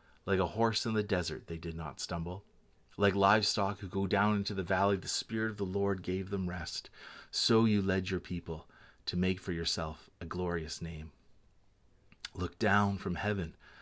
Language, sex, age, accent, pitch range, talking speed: English, male, 30-49, American, 85-105 Hz, 180 wpm